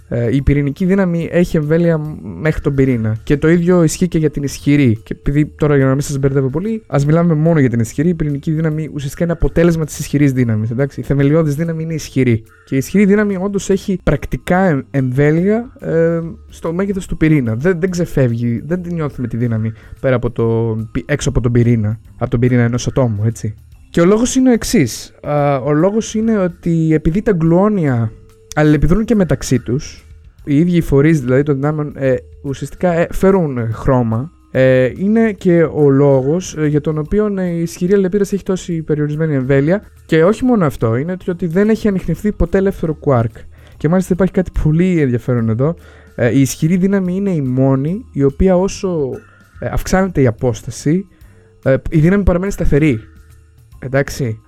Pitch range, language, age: 130-180 Hz, Greek, 20-39